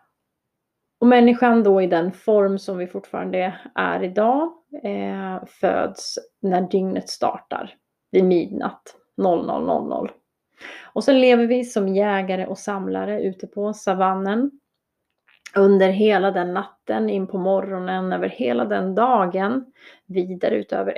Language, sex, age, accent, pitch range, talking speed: Swedish, female, 30-49, native, 185-225 Hz, 125 wpm